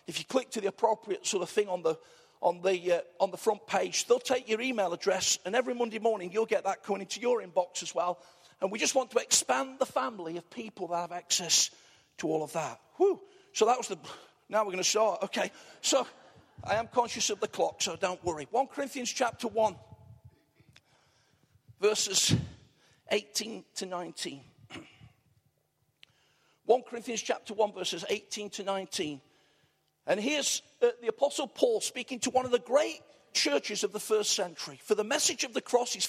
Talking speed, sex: 190 wpm, male